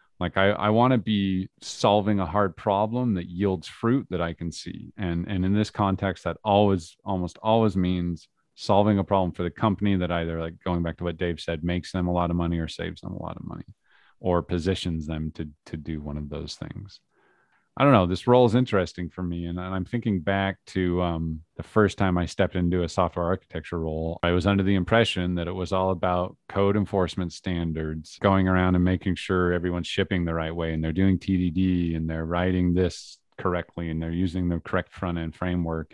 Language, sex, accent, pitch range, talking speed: English, male, American, 85-100 Hz, 215 wpm